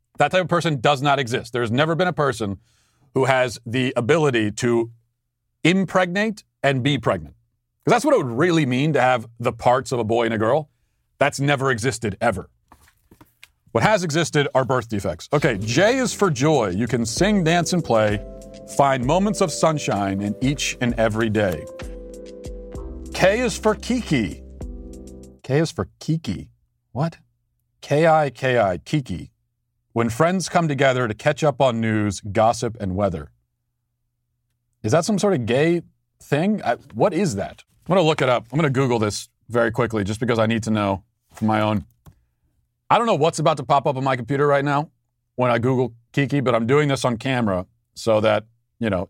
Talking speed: 185 wpm